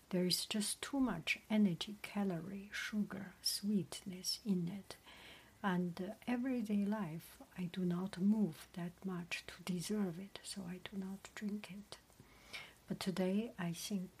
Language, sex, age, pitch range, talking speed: English, female, 60-79, 175-205 Hz, 145 wpm